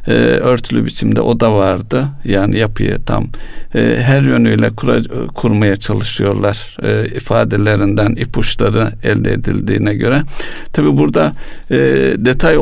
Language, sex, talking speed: Turkish, male, 90 wpm